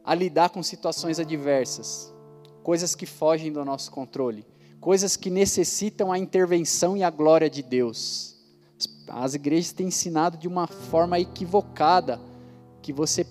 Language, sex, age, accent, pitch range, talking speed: Portuguese, male, 20-39, Brazilian, 140-180 Hz, 140 wpm